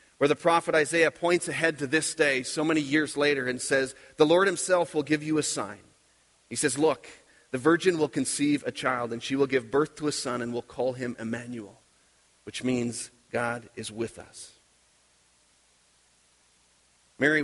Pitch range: 120-150 Hz